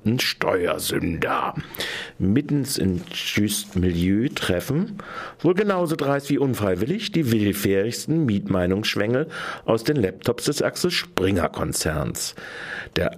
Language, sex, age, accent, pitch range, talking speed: German, male, 50-69, German, 95-160 Hz, 100 wpm